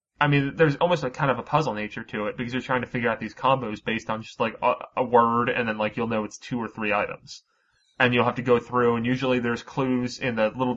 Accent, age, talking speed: American, 30-49, 280 wpm